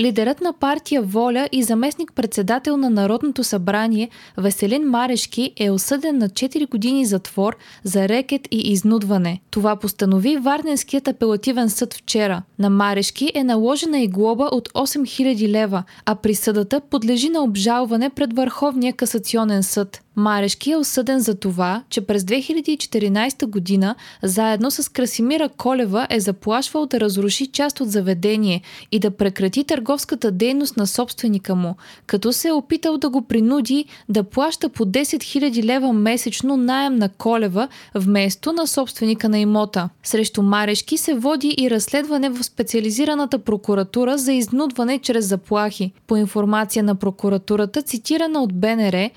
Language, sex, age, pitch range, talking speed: Bulgarian, female, 20-39, 210-275 Hz, 140 wpm